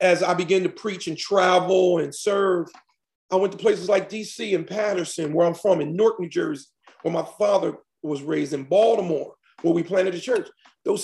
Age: 40-59